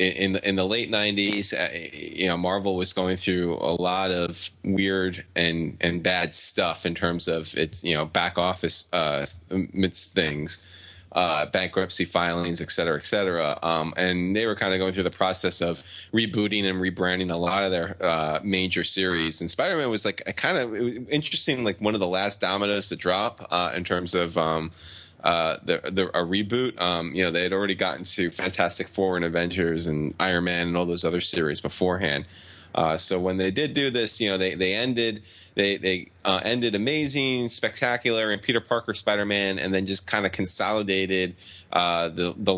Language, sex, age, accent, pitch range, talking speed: English, male, 20-39, American, 90-100 Hz, 195 wpm